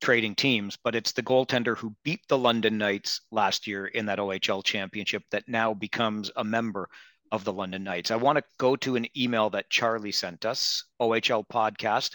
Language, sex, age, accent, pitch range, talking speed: English, male, 40-59, American, 110-135 Hz, 190 wpm